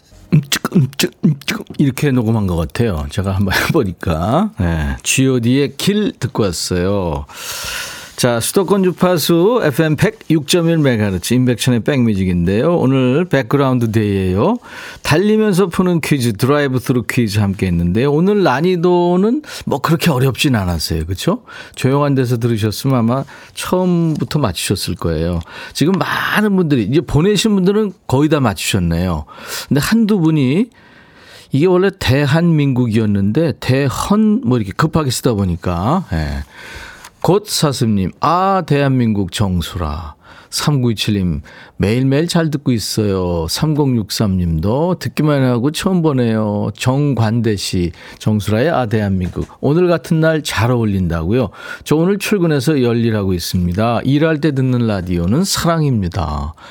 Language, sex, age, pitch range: Korean, male, 40-59, 105-160 Hz